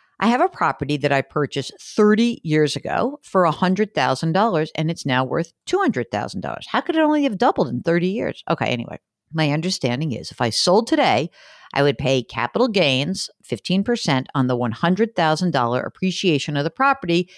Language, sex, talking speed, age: English, female, 165 wpm, 50-69